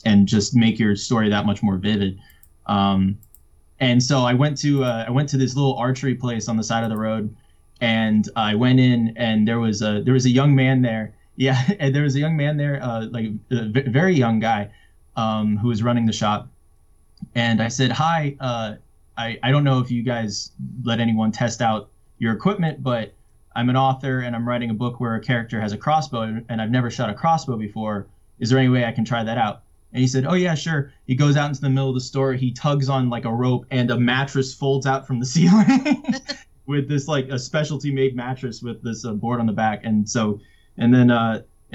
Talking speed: 230 wpm